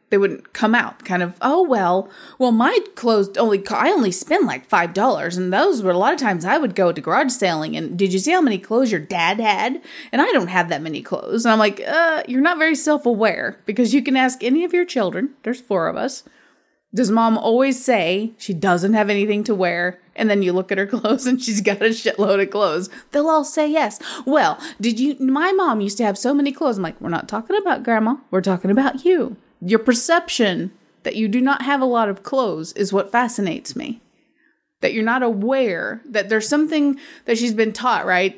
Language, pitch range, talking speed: English, 200-260 Hz, 225 wpm